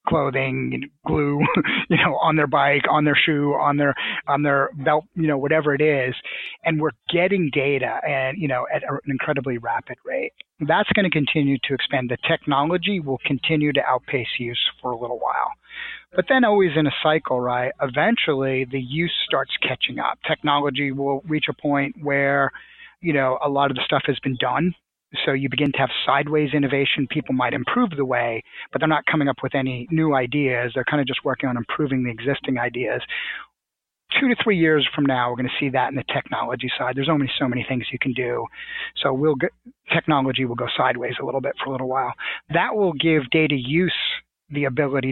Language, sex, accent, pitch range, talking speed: English, male, American, 135-160 Hz, 200 wpm